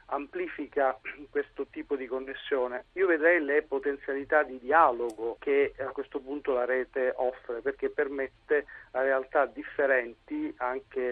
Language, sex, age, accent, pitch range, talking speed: Italian, male, 40-59, native, 130-170 Hz, 130 wpm